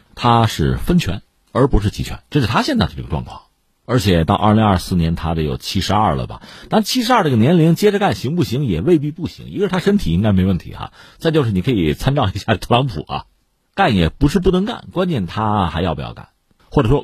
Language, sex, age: Chinese, male, 50-69